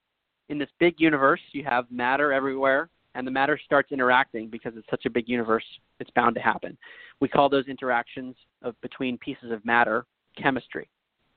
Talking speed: 170 wpm